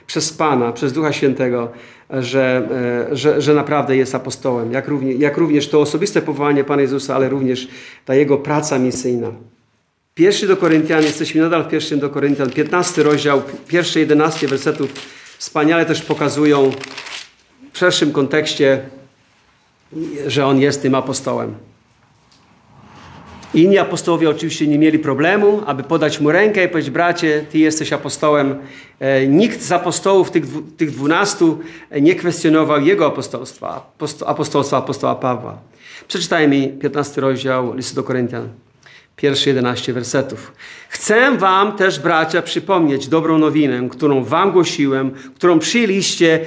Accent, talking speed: native, 130 wpm